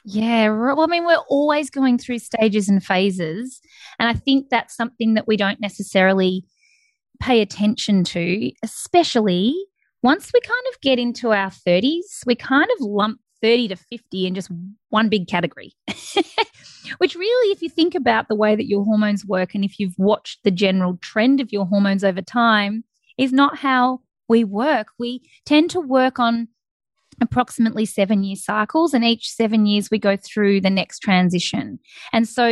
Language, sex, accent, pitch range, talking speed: English, female, Australian, 195-250 Hz, 175 wpm